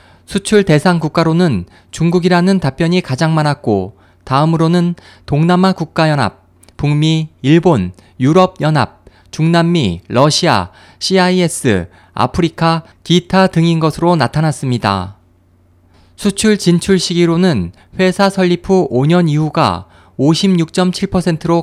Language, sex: Korean, male